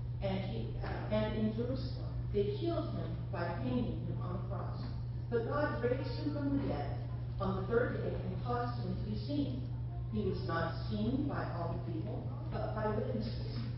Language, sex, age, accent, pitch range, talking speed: English, female, 40-59, American, 115-125 Hz, 185 wpm